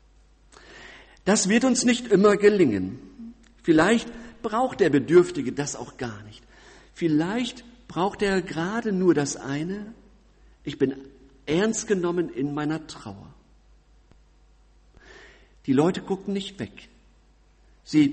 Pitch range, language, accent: 135-200 Hz, German, German